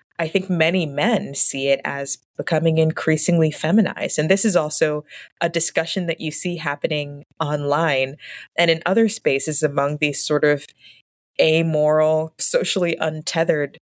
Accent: American